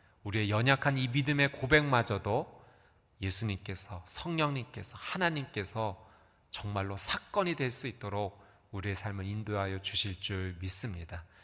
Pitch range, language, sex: 95-135 Hz, Korean, male